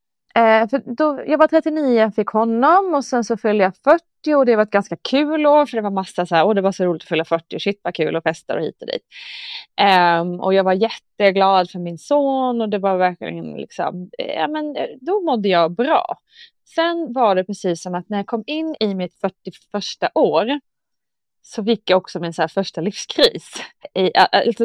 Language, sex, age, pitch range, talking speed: Swedish, female, 20-39, 185-260 Hz, 205 wpm